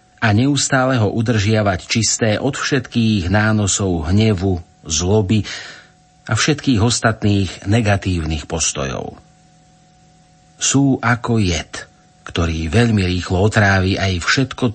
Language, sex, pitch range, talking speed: Slovak, male, 95-130 Hz, 100 wpm